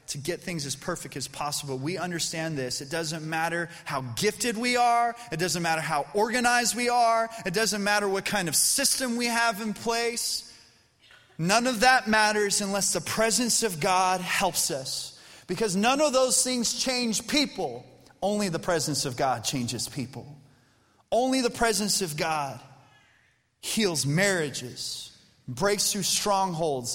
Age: 30-49